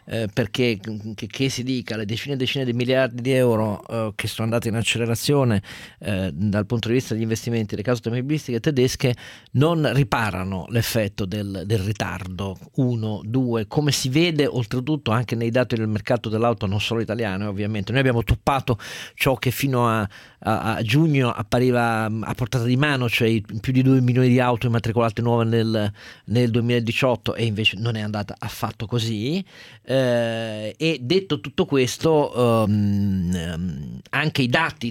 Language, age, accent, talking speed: Italian, 40-59, native, 165 wpm